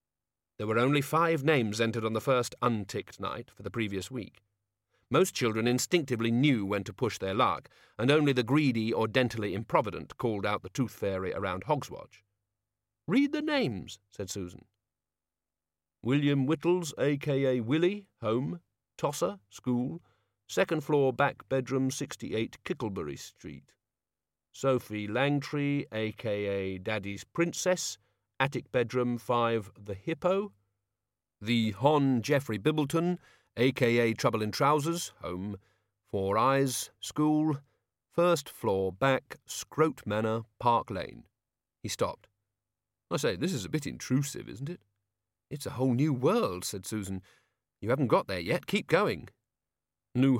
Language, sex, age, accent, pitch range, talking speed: English, male, 40-59, British, 105-145 Hz, 135 wpm